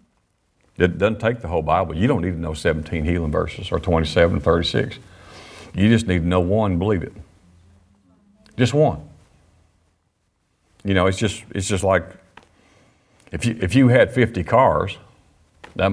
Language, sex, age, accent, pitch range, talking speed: English, male, 50-69, American, 85-100 Hz, 160 wpm